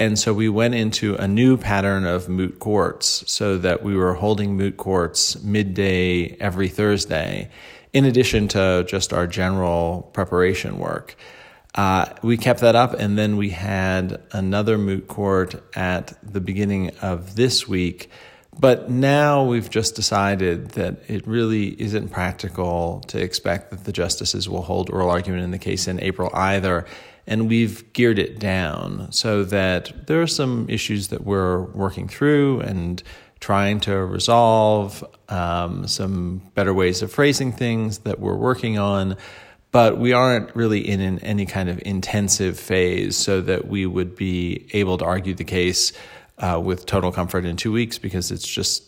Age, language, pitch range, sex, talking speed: 30-49, English, 90-110 Hz, male, 165 wpm